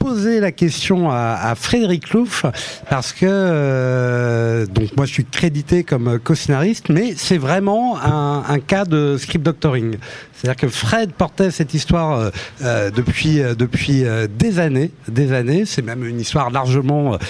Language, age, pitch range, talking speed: French, 60-79, 130-175 Hz, 155 wpm